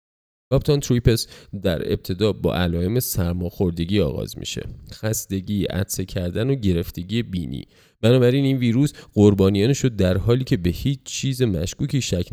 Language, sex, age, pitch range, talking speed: Persian, male, 30-49, 90-120 Hz, 130 wpm